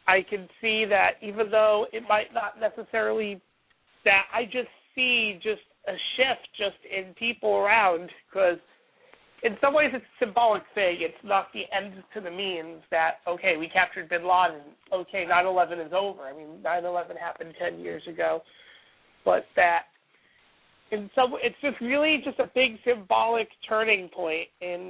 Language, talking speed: English, 160 wpm